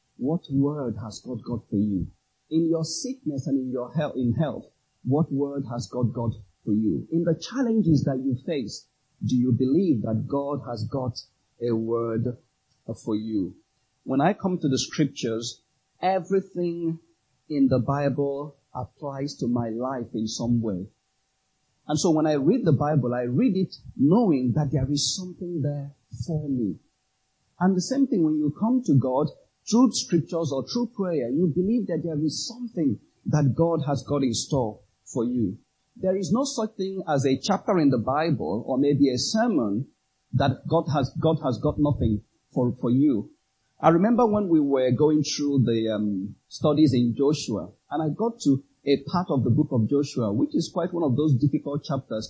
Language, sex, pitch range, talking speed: English, male, 125-165 Hz, 180 wpm